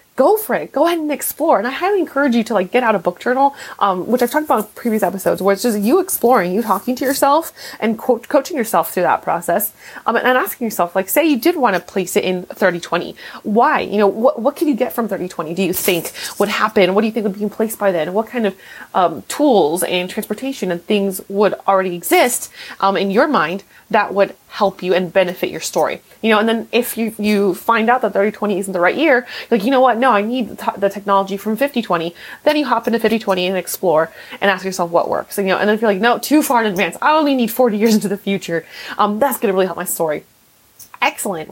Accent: American